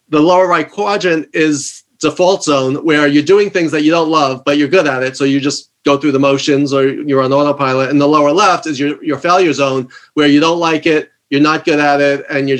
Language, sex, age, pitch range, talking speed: English, male, 30-49, 140-165 Hz, 250 wpm